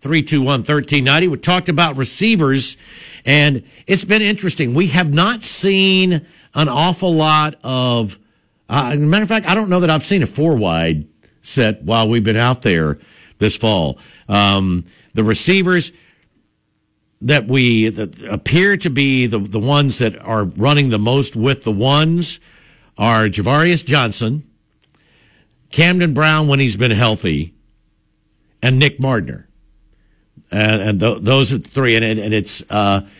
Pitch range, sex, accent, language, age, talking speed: 110-150 Hz, male, American, English, 60-79, 155 wpm